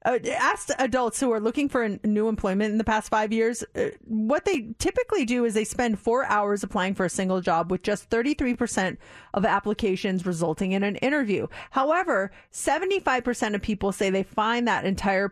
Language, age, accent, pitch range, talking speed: English, 30-49, American, 190-240 Hz, 200 wpm